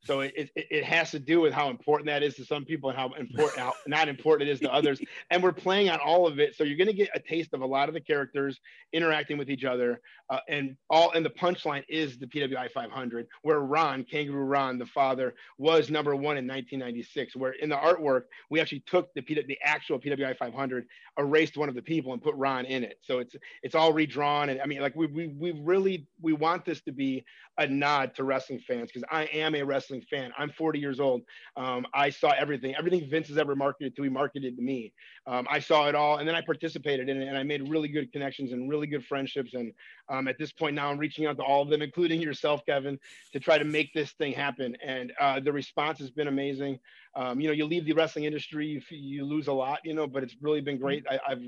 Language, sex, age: English, male, 40-59